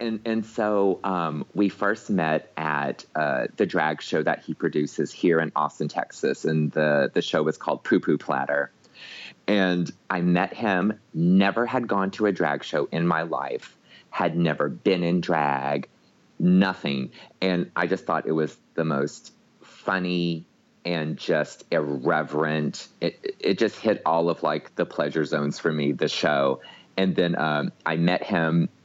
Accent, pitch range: American, 75-90 Hz